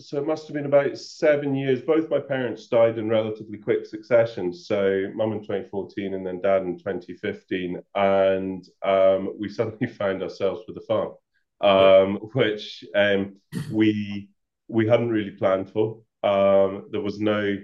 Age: 30-49